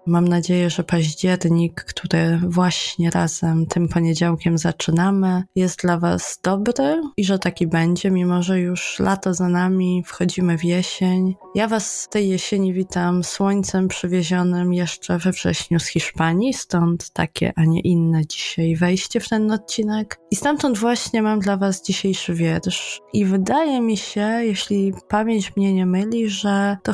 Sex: female